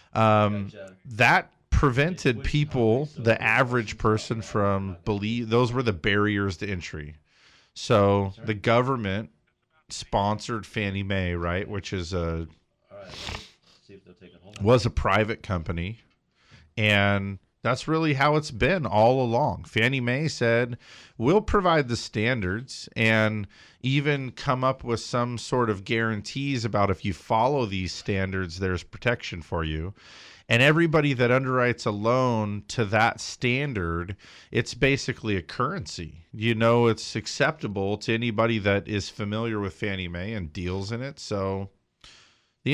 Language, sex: English, male